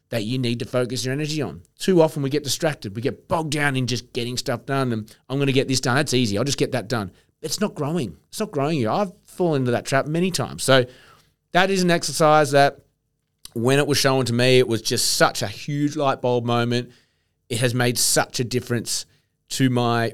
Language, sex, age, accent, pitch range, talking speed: English, male, 30-49, Australian, 110-135 Hz, 235 wpm